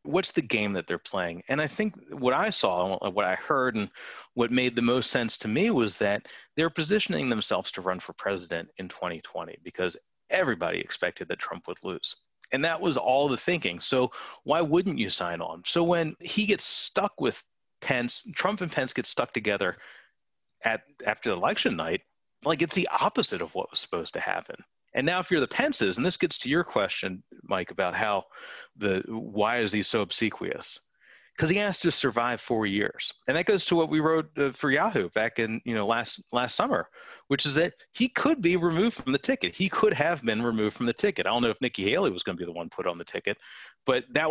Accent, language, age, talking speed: American, English, 30-49, 220 wpm